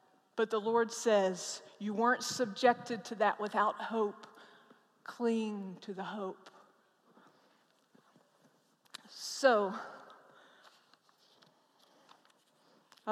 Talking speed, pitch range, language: 80 wpm, 210-245 Hz, English